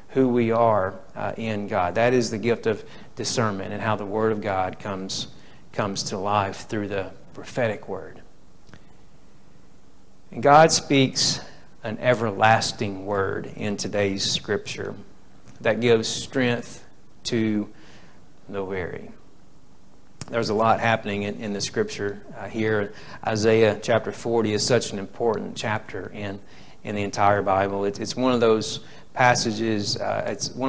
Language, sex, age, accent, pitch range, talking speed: Bengali, male, 40-59, American, 105-115 Hz, 140 wpm